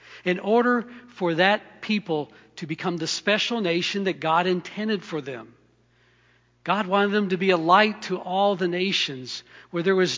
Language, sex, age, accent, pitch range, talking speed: English, male, 60-79, American, 150-200 Hz, 170 wpm